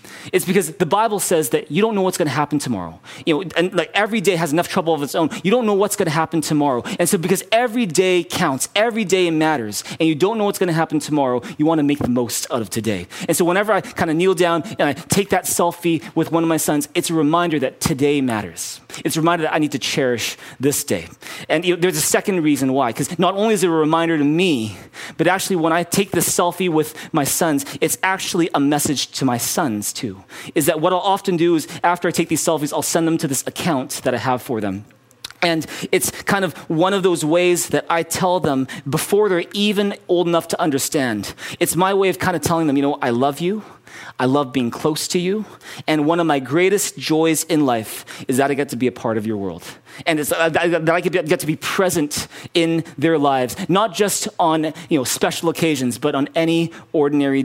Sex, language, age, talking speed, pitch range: male, English, 30-49, 245 wpm, 140-180 Hz